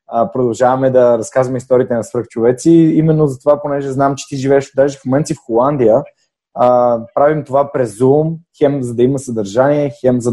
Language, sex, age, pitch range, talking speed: Bulgarian, male, 20-39, 120-145 Hz, 175 wpm